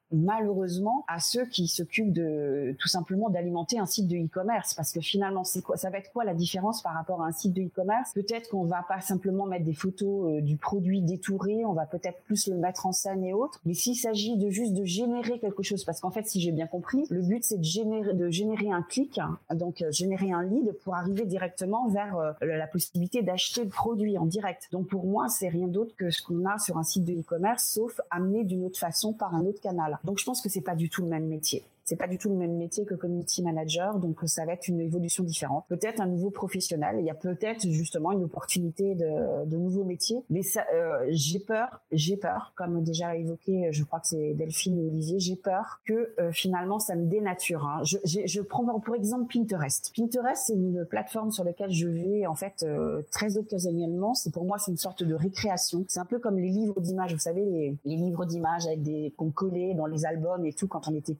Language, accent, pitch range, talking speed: French, French, 170-205 Hz, 235 wpm